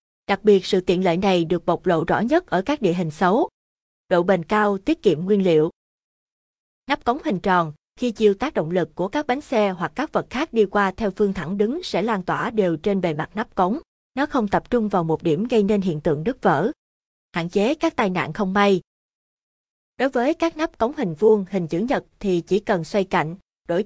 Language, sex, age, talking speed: Vietnamese, female, 20-39, 230 wpm